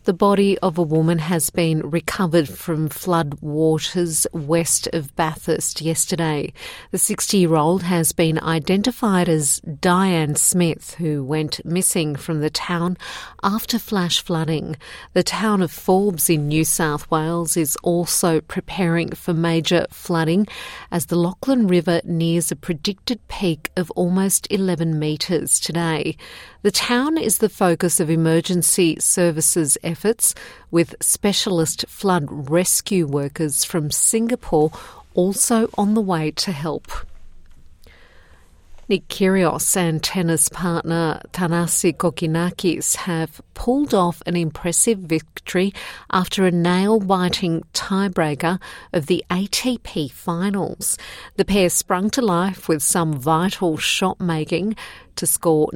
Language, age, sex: English, 50-69, female